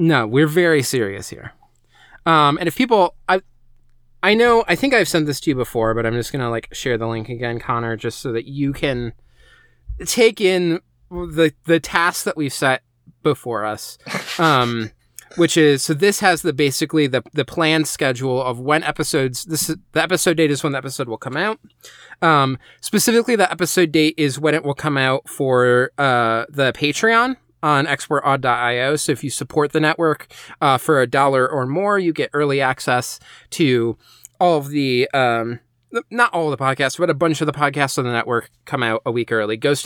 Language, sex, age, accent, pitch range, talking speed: English, male, 20-39, American, 120-160 Hz, 195 wpm